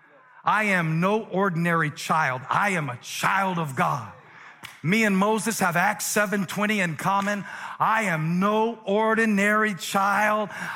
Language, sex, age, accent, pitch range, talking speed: English, male, 40-59, American, 160-255 Hz, 135 wpm